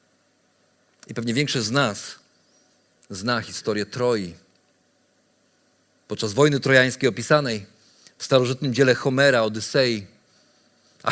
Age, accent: 50-69, native